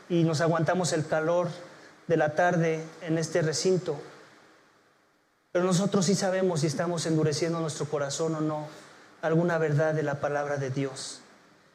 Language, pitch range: English, 165-190 Hz